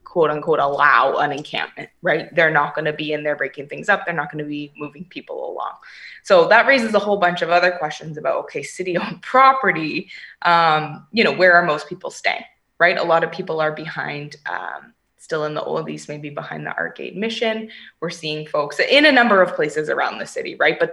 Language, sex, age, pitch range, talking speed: English, female, 20-39, 155-195 Hz, 220 wpm